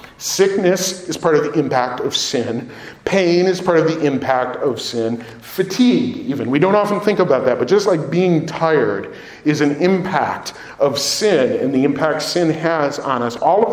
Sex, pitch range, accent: male, 165-210 Hz, American